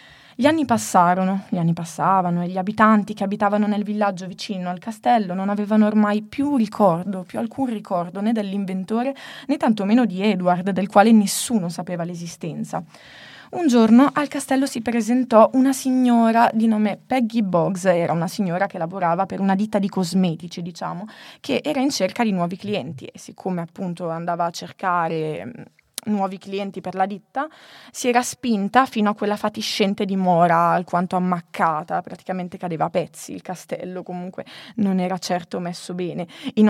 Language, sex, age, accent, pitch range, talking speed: Italian, female, 20-39, native, 180-225 Hz, 160 wpm